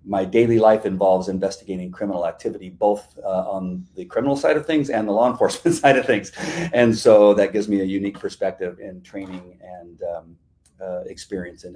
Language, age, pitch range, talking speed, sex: English, 40-59, 95-110 Hz, 190 wpm, male